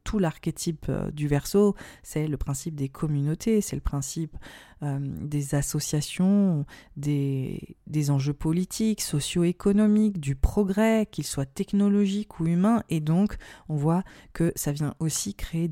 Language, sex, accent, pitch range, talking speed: French, female, French, 145-185 Hz, 135 wpm